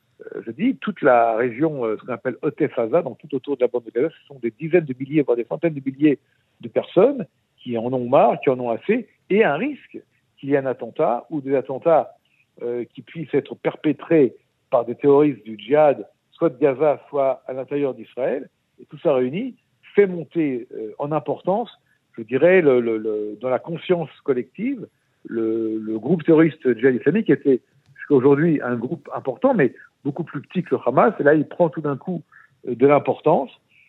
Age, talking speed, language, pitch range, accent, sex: 60-79, 200 wpm, French, 120-155 Hz, French, male